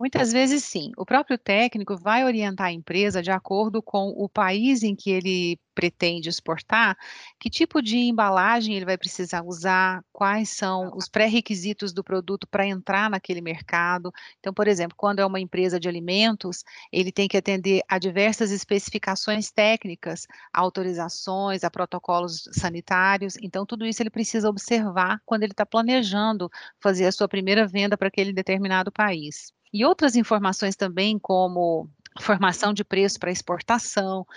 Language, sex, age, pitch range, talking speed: Portuguese, female, 30-49, 185-215 Hz, 155 wpm